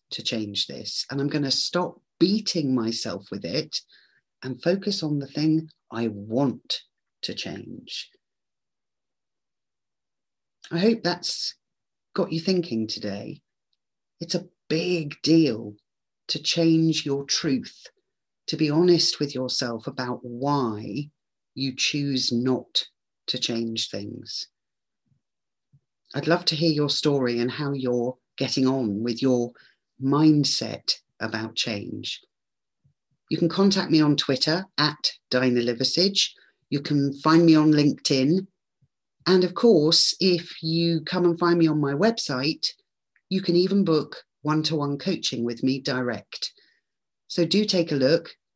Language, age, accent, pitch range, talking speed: English, 40-59, British, 125-170 Hz, 130 wpm